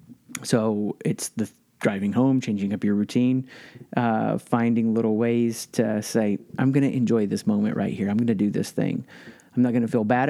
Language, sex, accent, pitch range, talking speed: English, male, American, 110-140 Hz, 205 wpm